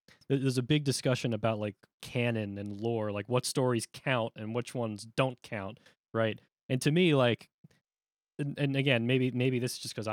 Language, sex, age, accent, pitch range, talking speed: English, male, 20-39, American, 105-130 Hz, 190 wpm